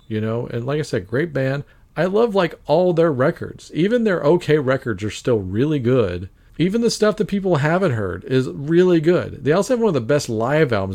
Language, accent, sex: English, American, male